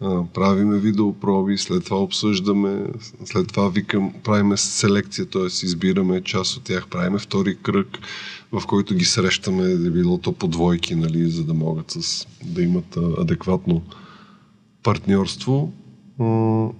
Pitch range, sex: 95-120 Hz, male